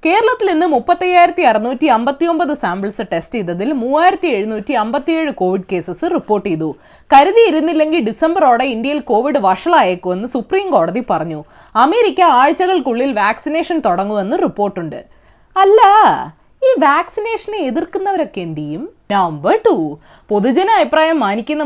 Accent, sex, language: native, female, Malayalam